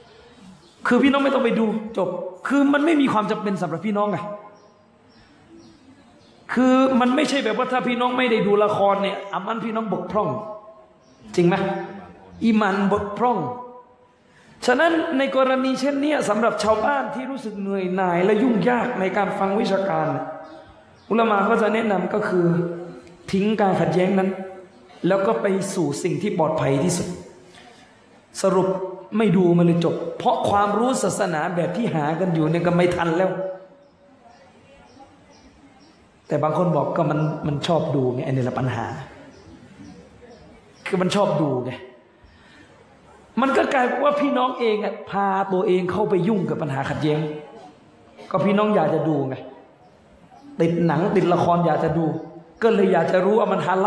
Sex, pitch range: male, 175-220 Hz